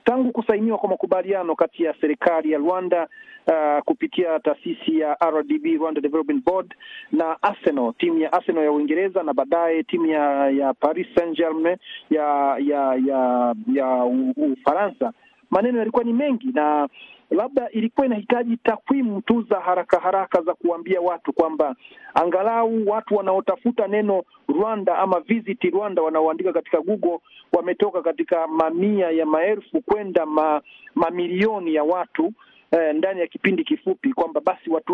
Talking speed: 145 wpm